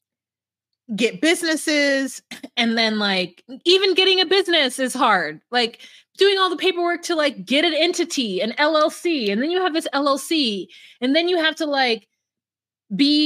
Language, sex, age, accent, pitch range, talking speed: English, female, 20-39, American, 205-295 Hz, 165 wpm